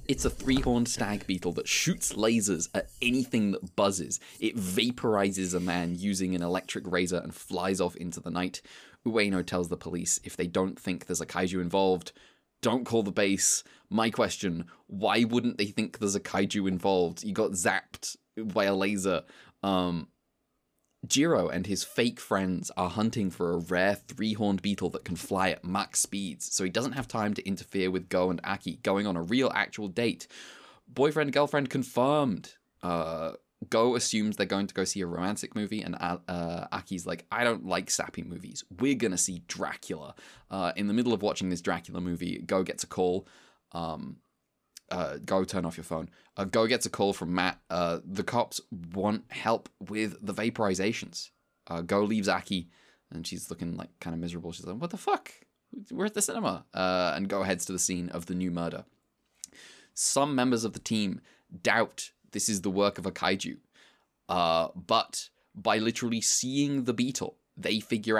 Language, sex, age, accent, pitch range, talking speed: English, male, 20-39, British, 90-110 Hz, 185 wpm